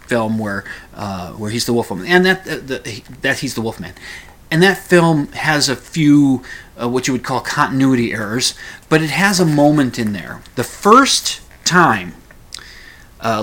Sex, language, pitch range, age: male, English, 110-135 Hz, 30-49